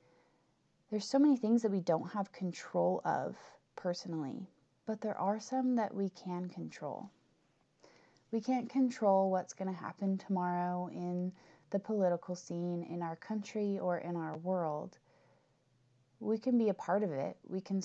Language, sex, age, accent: English, female, 20-39, American